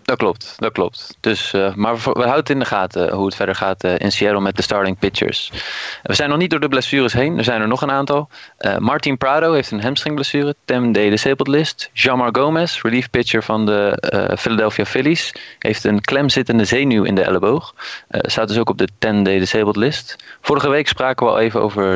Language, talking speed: Dutch, 210 wpm